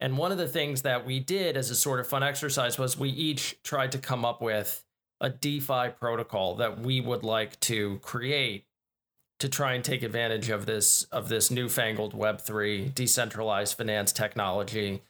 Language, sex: English, male